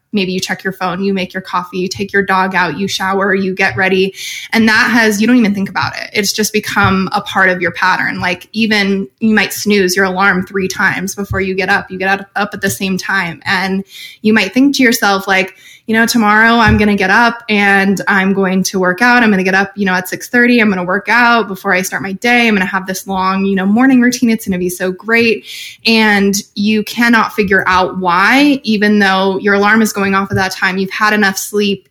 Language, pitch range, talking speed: English, 190-210 Hz, 250 wpm